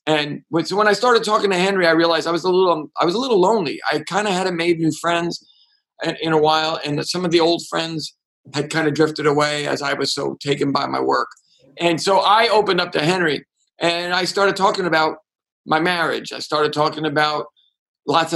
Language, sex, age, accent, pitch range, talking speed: English, male, 50-69, American, 150-175 Hz, 215 wpm